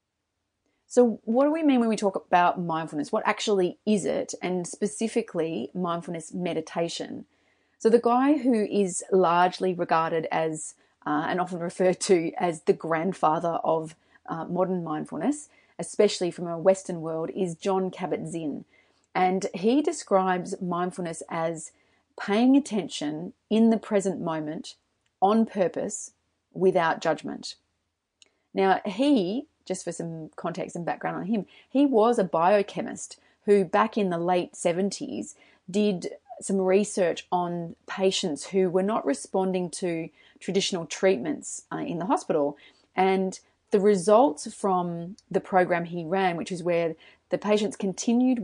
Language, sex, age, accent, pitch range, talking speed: English, female, 30-49, Australian, 165-205 Hz, 140 wpm